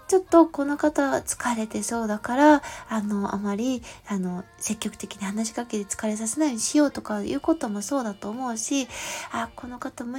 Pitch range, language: 220-330 Hz, Japanese